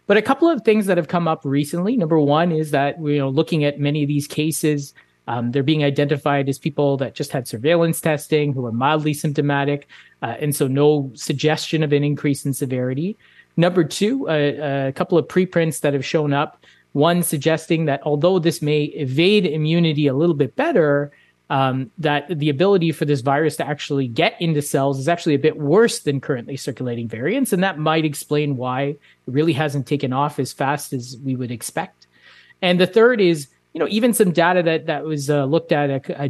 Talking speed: 205 wpm